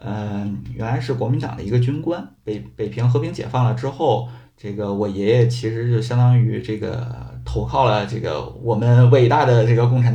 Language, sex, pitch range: Chinese, male, 105-125 Hz